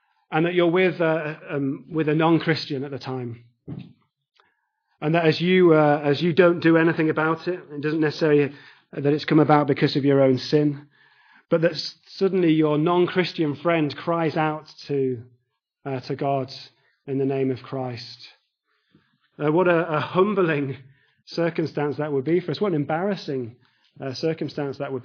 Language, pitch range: English, 140-165 Hz